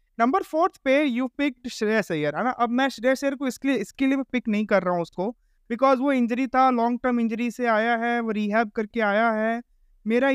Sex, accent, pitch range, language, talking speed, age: male, native, 185-245 Hz, Hindi, 225 wpm, 20-39